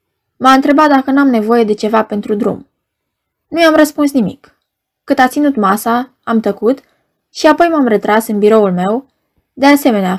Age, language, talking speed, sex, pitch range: 20-39, Romanian, 165 wpm, female, 200-260 Hz